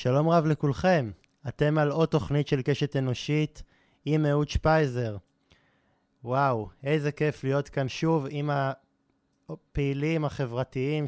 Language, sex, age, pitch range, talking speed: Hebrew, male, 20-39, 120-150 Hz, 120 wpm